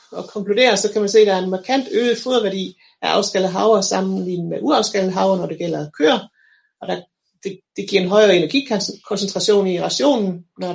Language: Danish